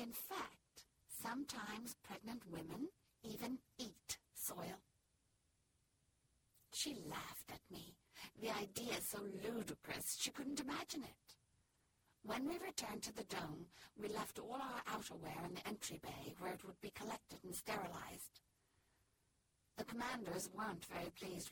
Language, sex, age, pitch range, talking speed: English, female, 60-79, 190-230 Hz, 135 wpm